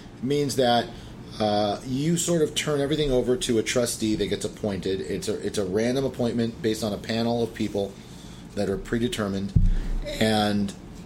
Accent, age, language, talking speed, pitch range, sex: American, 30-49, English, 165 wpm, 100-125 Hz, male